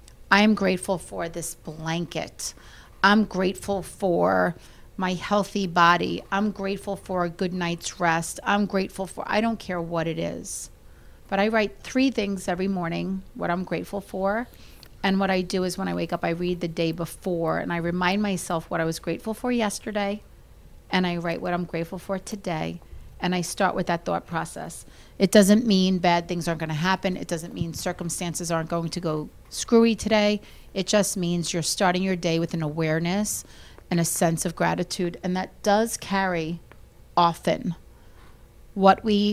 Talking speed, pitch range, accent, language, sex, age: 180 wpm, 170-200 Hz, American, English, female, 40-59